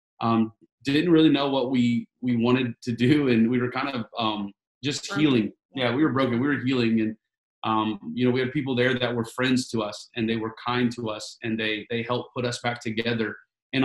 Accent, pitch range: American, 115-130 Hz